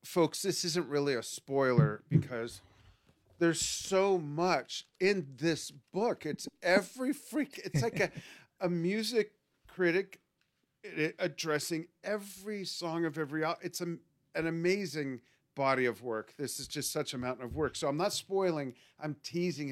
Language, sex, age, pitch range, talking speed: English, male, 40-59, 130-170 Hz, 145 wpm